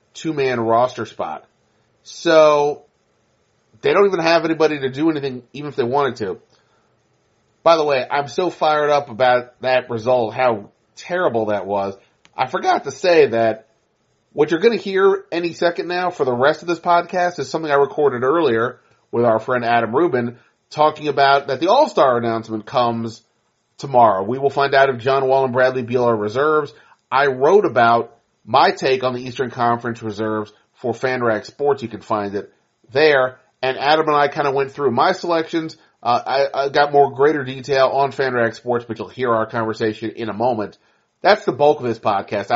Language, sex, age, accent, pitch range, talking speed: English, male, 30-49, American, 115-145 Hz, 185 wpm